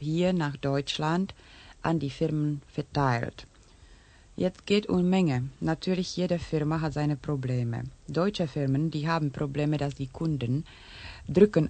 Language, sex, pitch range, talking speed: Urdu, female, 135-175 Hz, 135 wpm